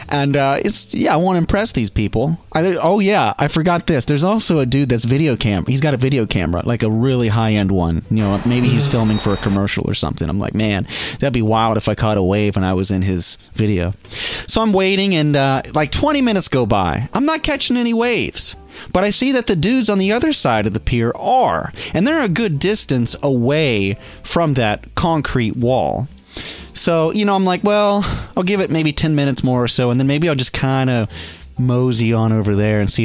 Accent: American